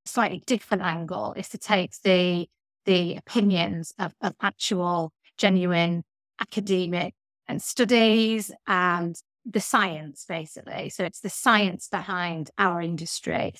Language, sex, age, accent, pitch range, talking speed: English, female, 30-49, British, 175-210 Hz, 120 wpm